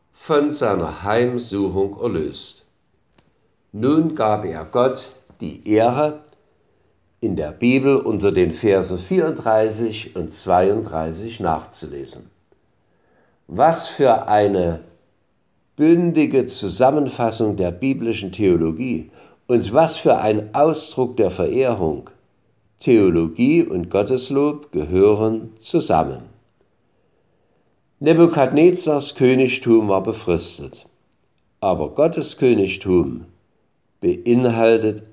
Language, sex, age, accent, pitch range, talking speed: German, male, 60-79, German, 100-140 Hz, 80 wpm